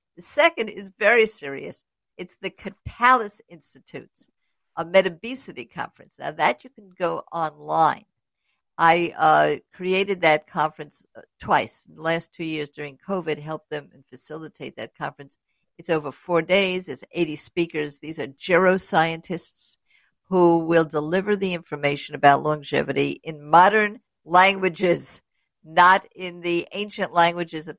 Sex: female